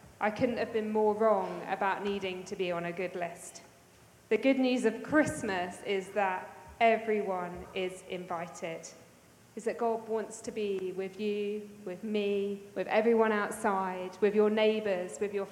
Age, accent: 20-39, British